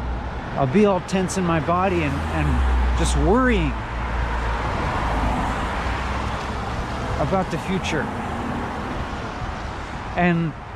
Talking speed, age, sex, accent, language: 85 wpm, 30-49, male, American, English